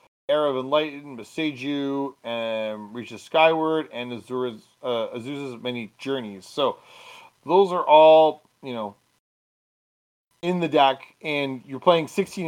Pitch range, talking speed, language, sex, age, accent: 130-175 Hz, 125 wpm, English, male, 30-49, American